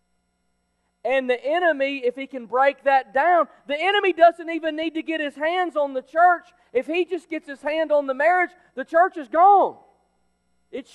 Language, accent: English, American